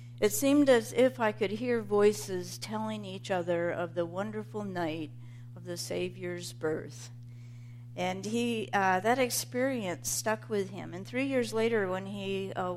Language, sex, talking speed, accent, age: English, female, 160 wpm, American, 60-79